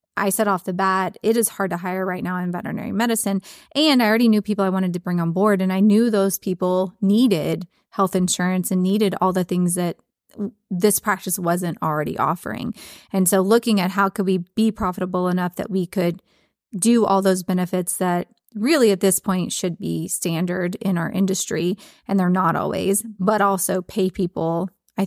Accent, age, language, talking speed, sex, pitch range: American, 20-39, English, 195 wpm, female, 180-205 Hz